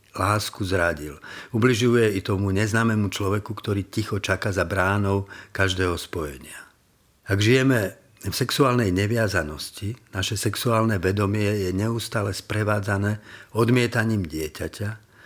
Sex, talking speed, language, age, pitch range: male, 105 wpm, Slovak, 50-69, 95-110 Hz